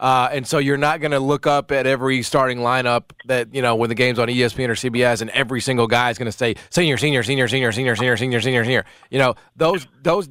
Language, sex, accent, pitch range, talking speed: English, male, American, 120-135 Hz, 255 wpm